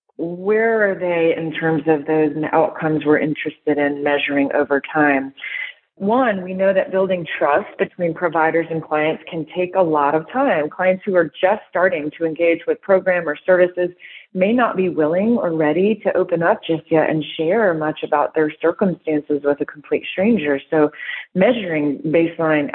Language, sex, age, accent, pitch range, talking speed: English, female, 30-49, American, 155-195 Hz, 170 wpm